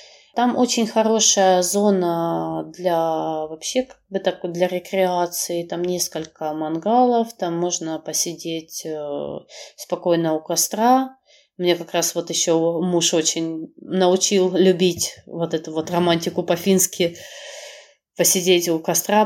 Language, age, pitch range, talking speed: Russian, 20-39, 165-220 Hz, 115 wpm